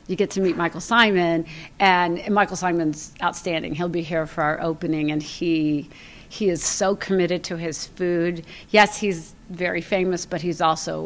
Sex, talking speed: female, 175 wpm